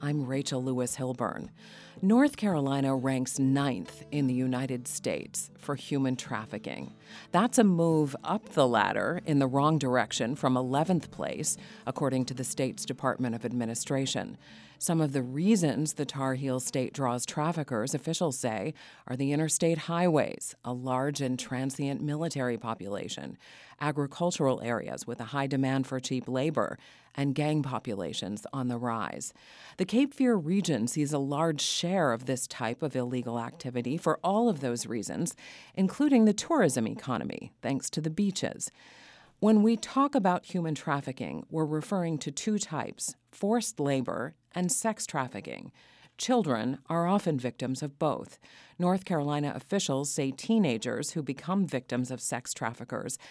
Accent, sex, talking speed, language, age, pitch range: American, female, 145 wpm, English, 40-59, 130-165 Hz